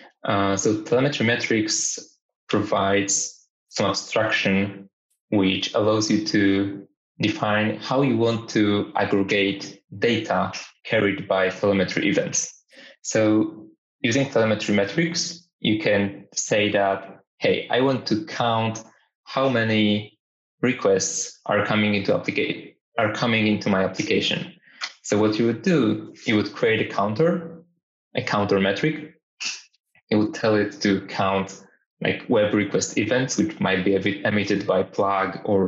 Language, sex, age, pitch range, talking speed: English, male, 20-39, 100-115 Hz, 135 wpm